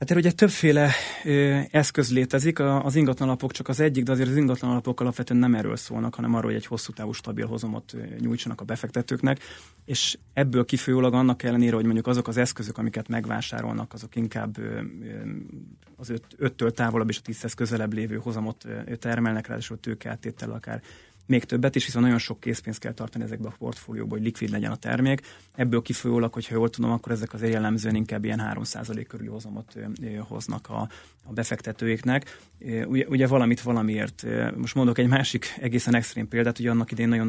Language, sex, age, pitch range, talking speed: Hungarian, male, 30-49, 110-125 Hz, 180 wpm